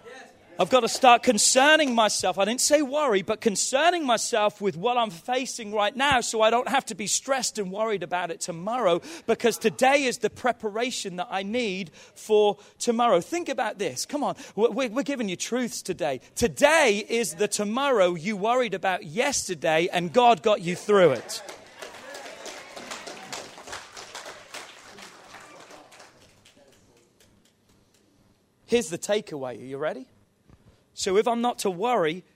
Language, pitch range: English, 180-240 Hz